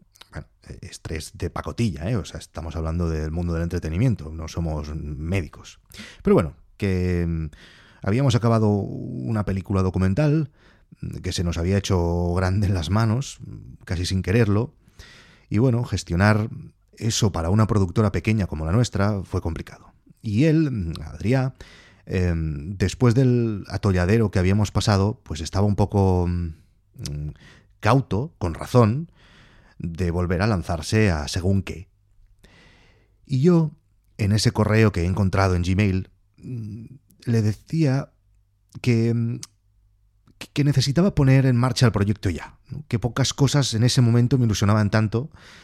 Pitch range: 90-120 Hz